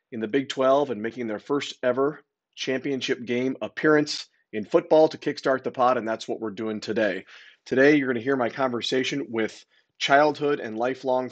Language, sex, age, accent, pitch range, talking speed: English, male, 40-59, American, 110-130 Hz, 185 wpm